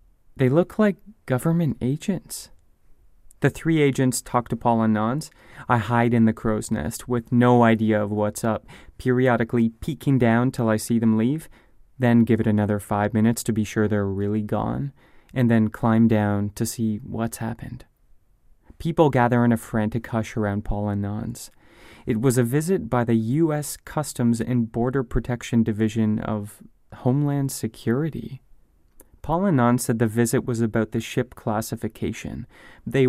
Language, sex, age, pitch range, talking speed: English, male, 30-49, 110-130 Hz, 160 wpm